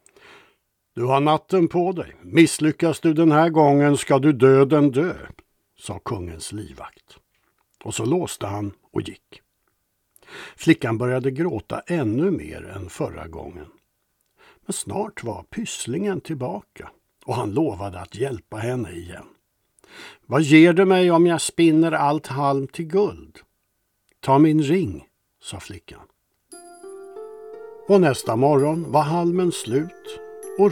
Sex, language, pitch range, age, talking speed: male, Swedish, 120-170 Hz, 60-79, 130 wpm